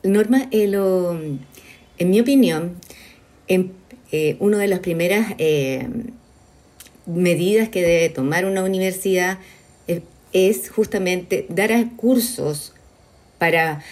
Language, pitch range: Spanish, 155-200 Hz